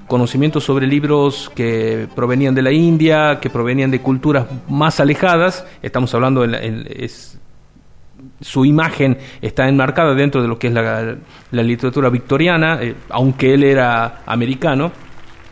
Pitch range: 120-155 Hz